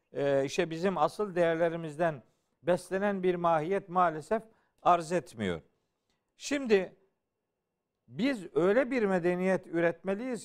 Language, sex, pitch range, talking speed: Turkish, male, 165-215 Hz, 100 wpm